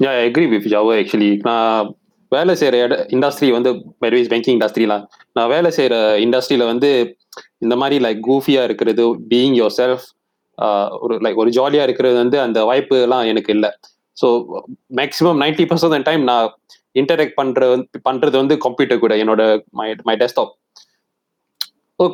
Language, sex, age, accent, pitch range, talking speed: Tamil, male, 20-39, native, 115-145 Hz, 140 wpm